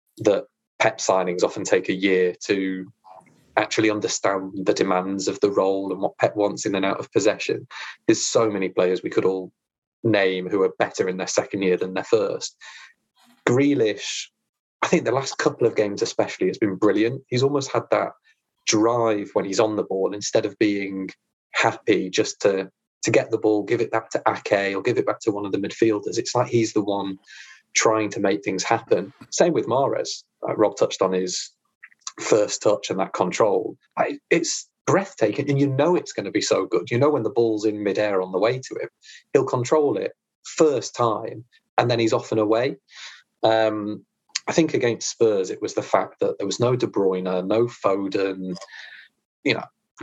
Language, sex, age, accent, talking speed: English, male, 20-39, British, 195 wpm